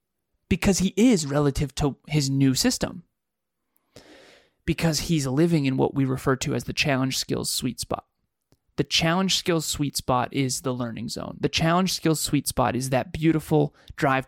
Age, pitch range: 30-49, 130-170 Hz